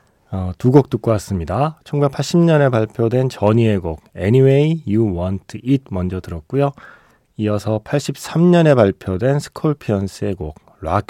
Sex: male